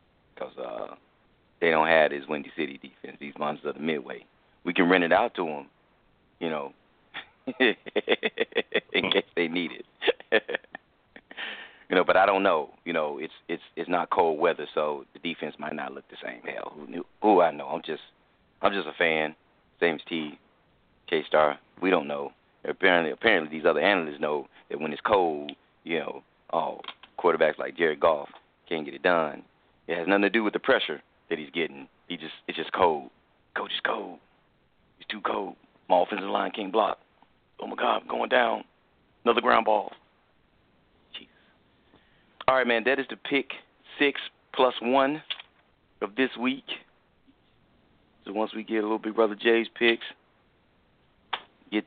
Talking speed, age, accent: 175 wpm, 30-49, American